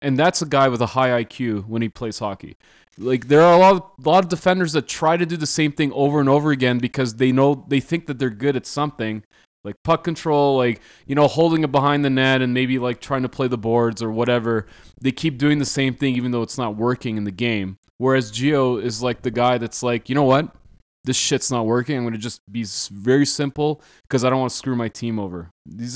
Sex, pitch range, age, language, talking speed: male, 115-145 Hz, 20-39, English, 245 wpm